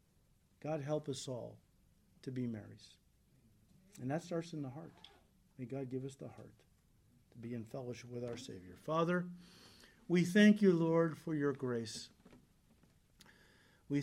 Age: 50-69